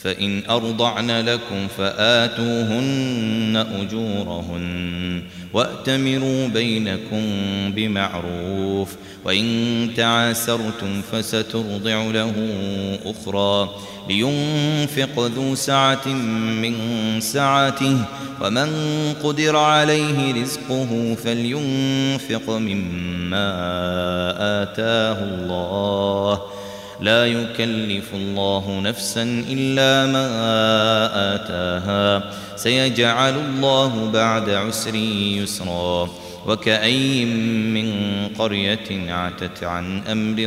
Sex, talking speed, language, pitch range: male, 65 wpm, Arabic, 100-120 Hz